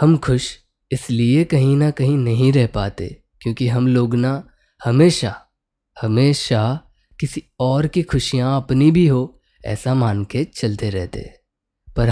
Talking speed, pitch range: 140 wpm, 120-150 Hz